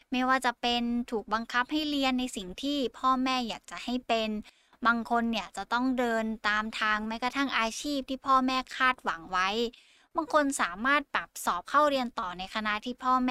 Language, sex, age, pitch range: Thai, female, 20-39, 205-255 Hz